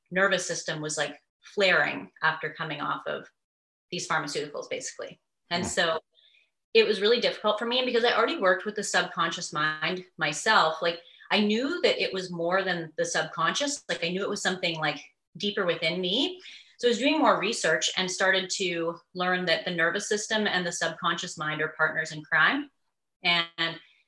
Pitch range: 160-200 Hz